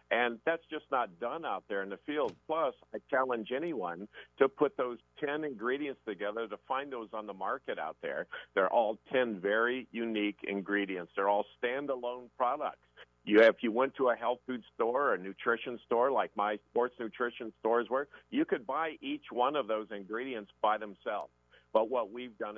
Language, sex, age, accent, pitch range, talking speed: English, male, 50-69, American, 100-125 Hz, 190 wpm